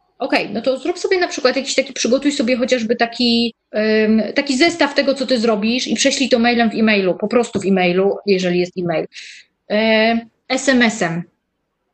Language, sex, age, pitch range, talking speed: Polish, female, 20-39, 215-275 Hz, 165 wpm